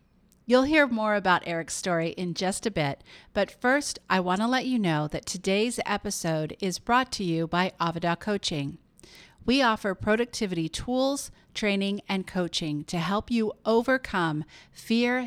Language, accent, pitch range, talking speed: English, American, 170-225 Hz, 155 wpm